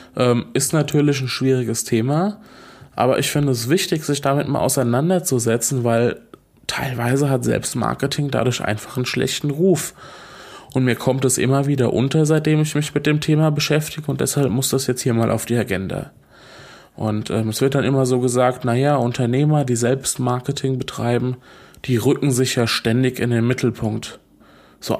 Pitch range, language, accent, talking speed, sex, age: 115-140 Hz, German, German, 165 wpm, male, 20-39